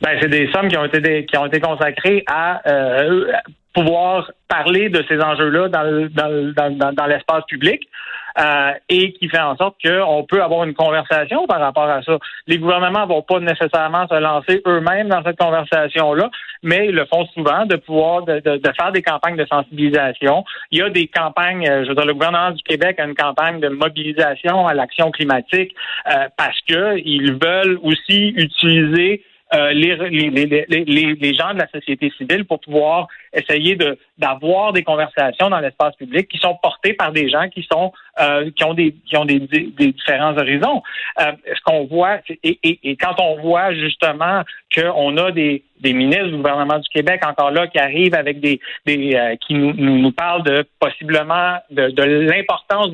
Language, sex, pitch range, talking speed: French, male, 150-175 Hz, 195 wpm